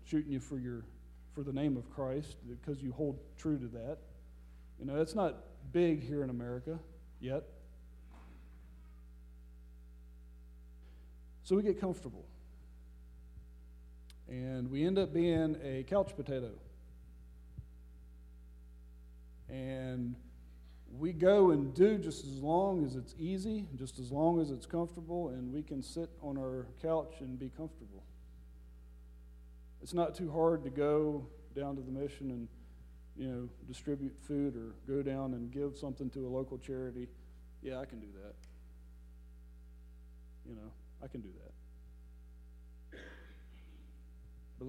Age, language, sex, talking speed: 40-59, English, male, 135 wpm